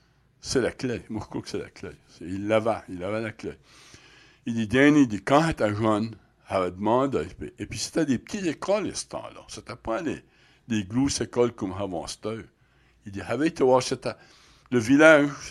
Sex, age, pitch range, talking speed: male, 60-79, 105-130 Hz, 190 wpm